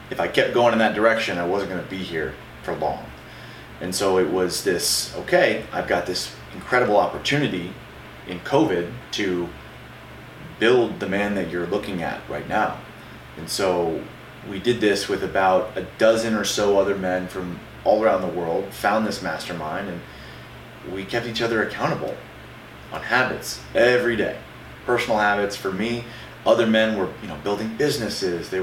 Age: 30-49